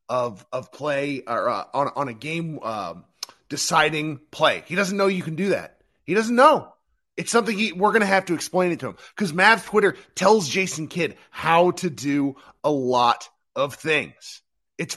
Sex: male